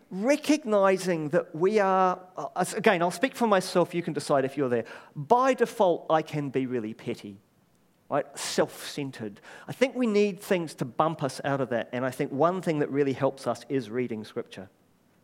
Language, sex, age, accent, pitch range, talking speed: English, male, 40-59, British, 125-175 Hz, 185 wpm